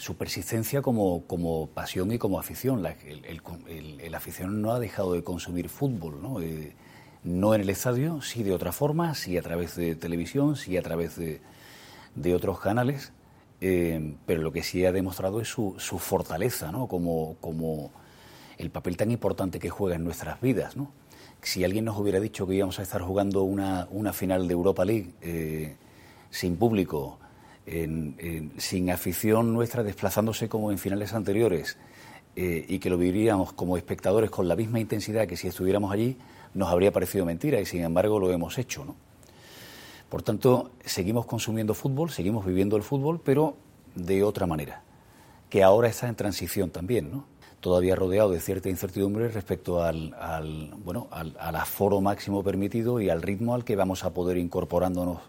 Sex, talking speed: male, 180 wpm